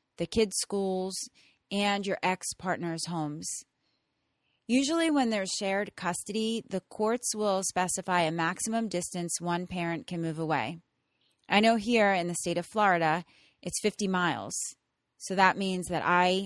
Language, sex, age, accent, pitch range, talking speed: English, female, 30-49, American, 170-205 Hz, 145 wpm